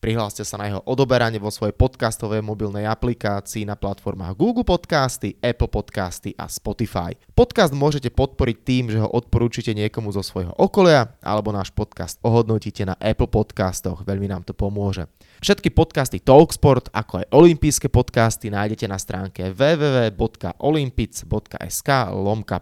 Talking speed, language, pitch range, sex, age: 140 wpm, Slovak, 100-125 Hz, male, 20-39